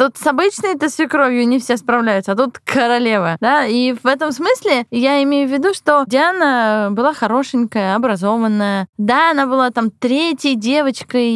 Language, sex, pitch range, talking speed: Russian, female, 210-265 Hz, 160 wpm